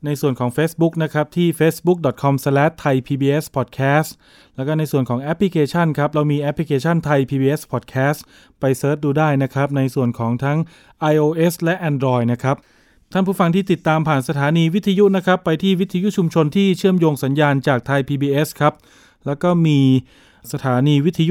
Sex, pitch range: male, 135-165 Hz